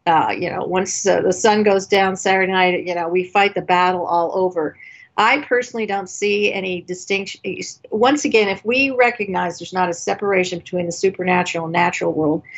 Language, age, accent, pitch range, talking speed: English, 50-69, American, 175-200 Hz, 185 wpm